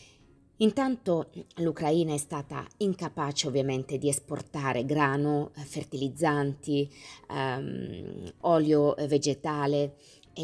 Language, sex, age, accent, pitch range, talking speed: Italian, female, 30-49, native, 135-165 Hz, 80 wpm